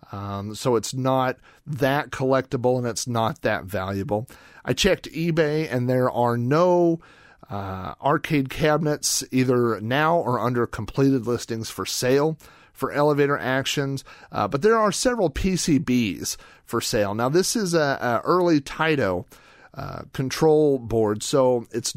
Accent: American